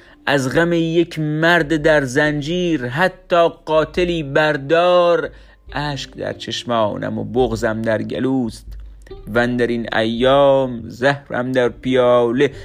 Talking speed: 105 wpm